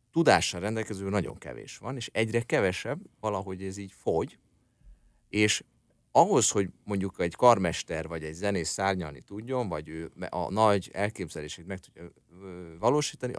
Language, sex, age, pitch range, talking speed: Hungarian, male, 30-49, 85-110 Hz, 140 wpm